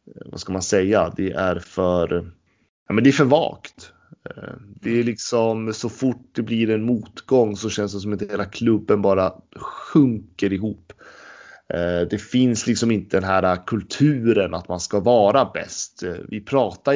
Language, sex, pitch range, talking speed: Swedish, male, 95-120 Hz, 165 wpm